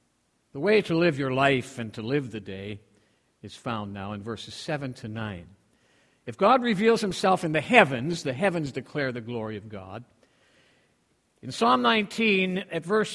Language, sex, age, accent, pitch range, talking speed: English, male, 50-69, American, 160-245 Hz, 175 wpm